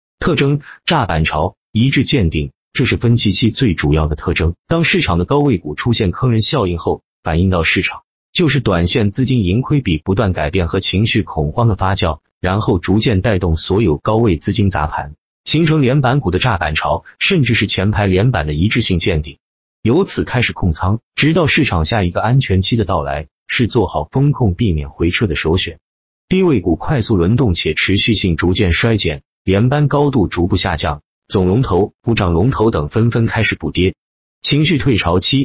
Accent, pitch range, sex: native, 85-130 Hz, male